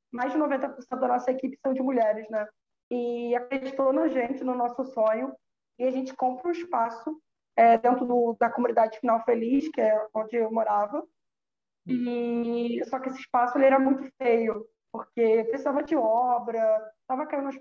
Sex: female